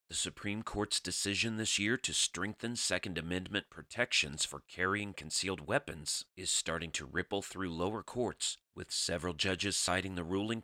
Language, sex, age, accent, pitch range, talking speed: English, male, 30-49, American, 80-100 Hz, 160 wpm